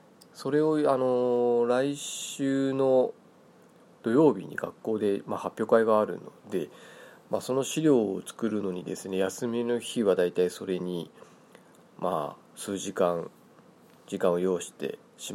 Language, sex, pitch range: Japanese, male, 95-130 Hz